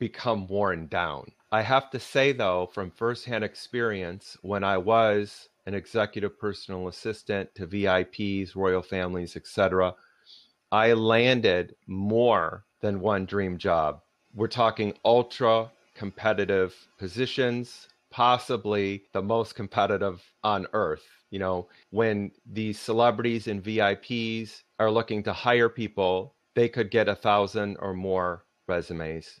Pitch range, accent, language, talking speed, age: 95-120 Hz, American, English, 125 wpm, 40-59